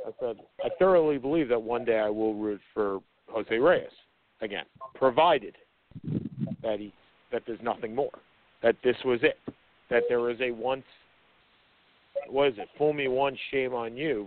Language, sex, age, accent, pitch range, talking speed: English, male, 50-69, American, 115-180 Hz, 170 wpm